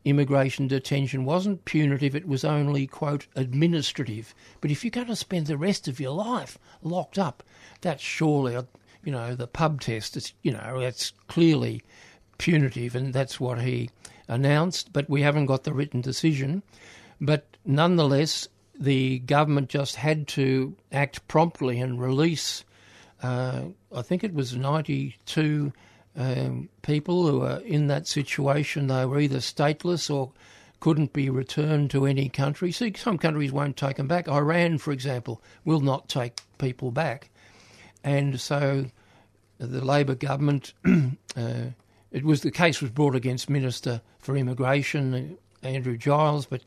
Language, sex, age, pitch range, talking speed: English, male, 60-79, 125-150 Hz, 150 wpm